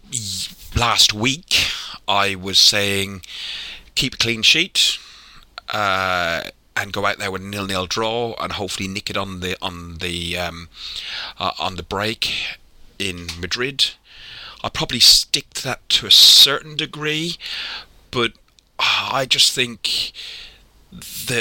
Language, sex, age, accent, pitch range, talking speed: English, male, 30-49, British, 95-115 Hz, 130 wpm